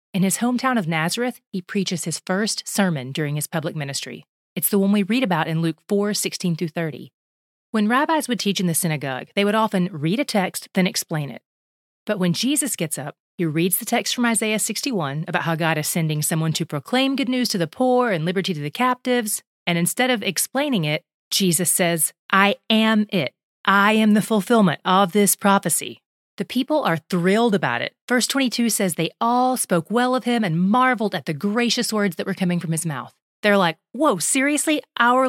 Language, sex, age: English, female, 30-49